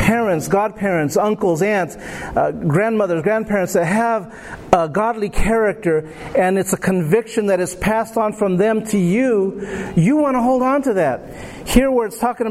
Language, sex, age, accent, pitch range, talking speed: English, male, 50-69, American, 180-230 Hz, 170 wpm